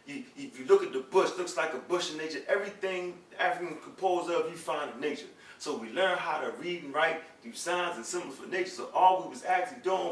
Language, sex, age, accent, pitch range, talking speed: English, male, 30-49, American, 130-185 Hz, 250 wpm